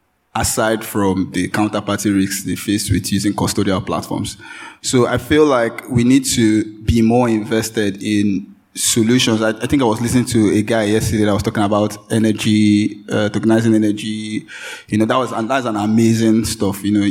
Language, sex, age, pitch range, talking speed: English, male, 20-39, 105-125 Hz, 180 wpm